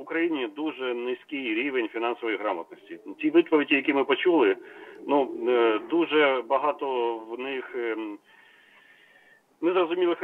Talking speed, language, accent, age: 105 wpm, Ukrainian, native, 40-59